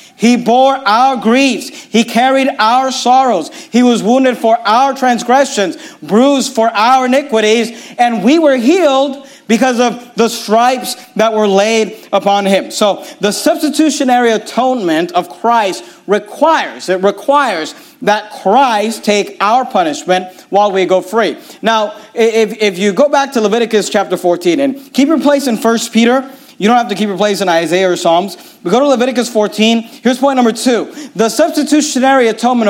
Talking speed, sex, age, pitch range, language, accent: 165 wpm, male, 40-59, 205-255 Hz, English, American